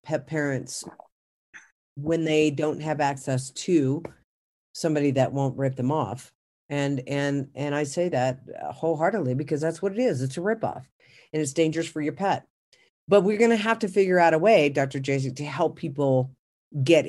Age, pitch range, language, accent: 50-69, 135-165 Hz, English, American